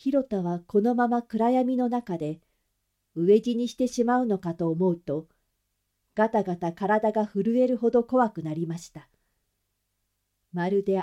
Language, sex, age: Japanese, female, 40-59